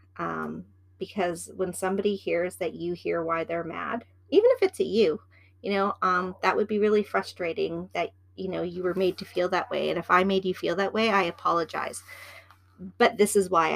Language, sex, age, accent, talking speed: English, female, 30-49, American, 210 wpm